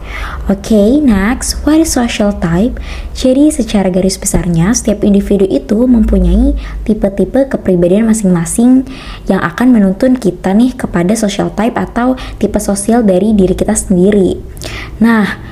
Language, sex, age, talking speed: Indonesian, male, 20-39, 130 wpm